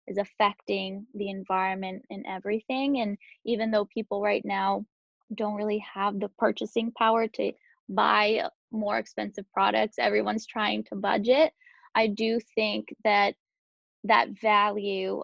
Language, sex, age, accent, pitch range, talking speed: English, female, 10-29, American, 200-220 Hz, 130 wpm